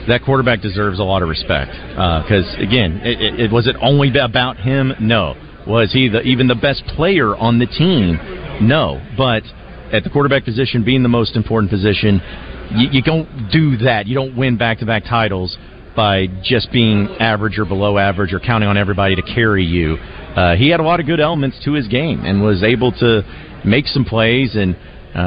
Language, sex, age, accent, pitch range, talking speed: English, male, 40-59, American, 95-125 Hz, 200 wpm